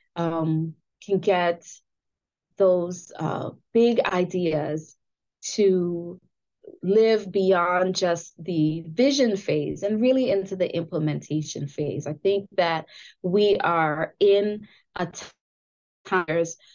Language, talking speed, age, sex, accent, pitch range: English, 105 wpm, 20-39, female, American, 165-210 Hz